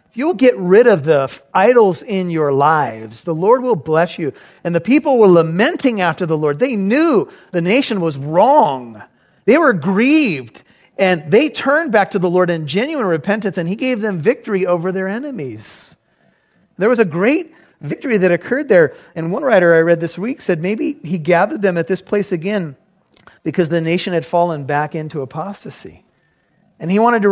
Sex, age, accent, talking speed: male, 40-59, American, 190 wpm